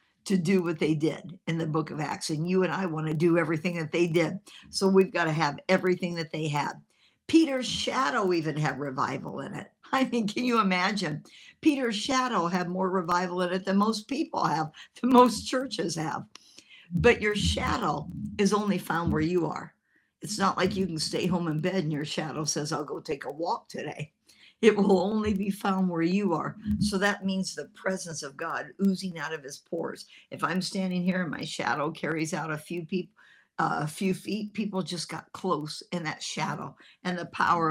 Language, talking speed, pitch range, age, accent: English, 205 wpm, 165-200 Hz, 60-79, American